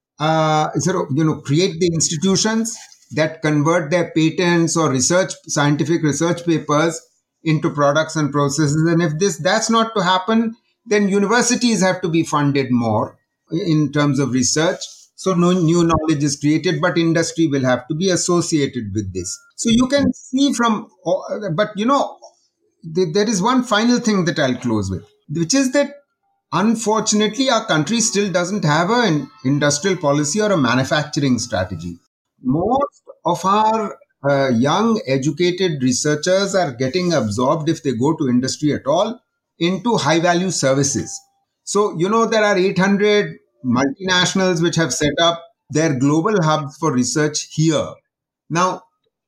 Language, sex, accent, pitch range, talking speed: English, male, Indian, 150-210 Hz, 150 wpm